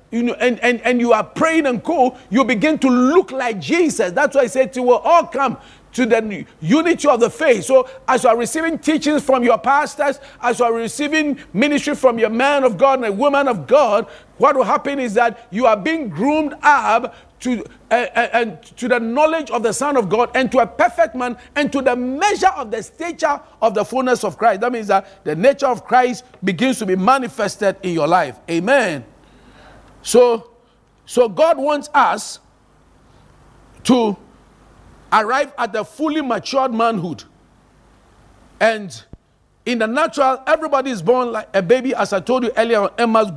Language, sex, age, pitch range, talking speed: English, male, 50-69, 220-280 Hz, 190 wpm